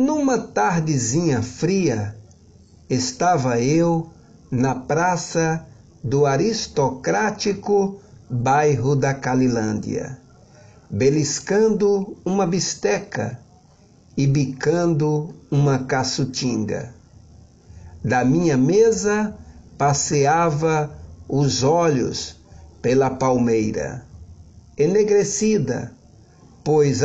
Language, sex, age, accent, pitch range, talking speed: Portuguese, male, 60-79, Brazilian, 125-170 Hz, 65 wpm